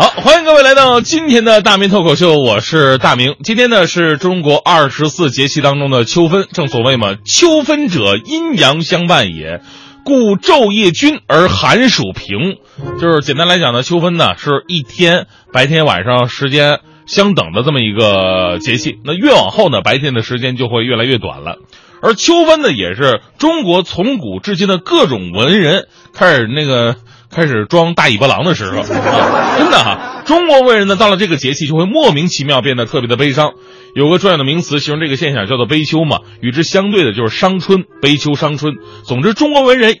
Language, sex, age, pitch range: Chinese, male, 20-39, 130-200 Hz